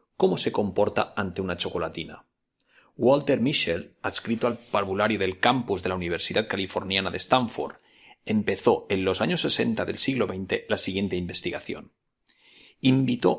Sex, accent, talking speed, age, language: male, Spanish, 140 wpm, 40-59, Spanish